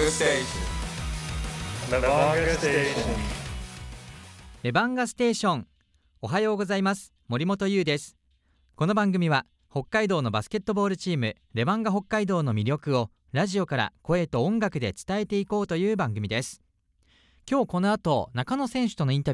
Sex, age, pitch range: male, 40-59, 115-190 Hz